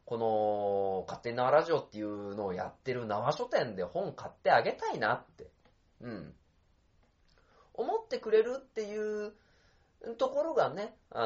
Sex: male